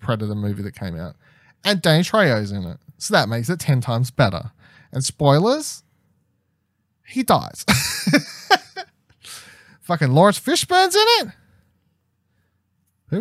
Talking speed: 125 wpm